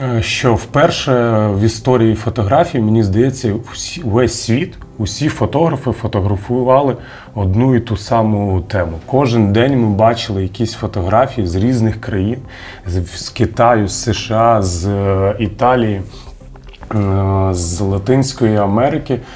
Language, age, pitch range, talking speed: Ukrainian, 30-49, 100-120 Hz, 110 wpm